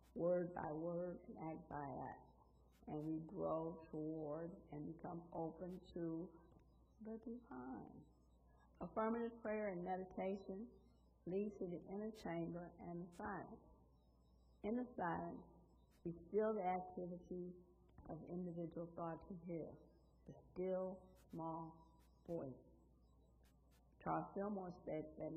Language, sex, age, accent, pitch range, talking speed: English, female, 50-69, American, 145-185 Hz, 115 wpm